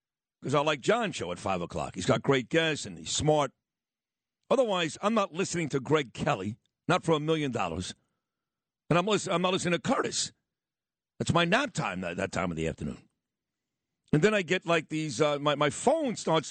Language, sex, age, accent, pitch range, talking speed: English, male, 50-69, American, 150-185 Hz, 200 wpm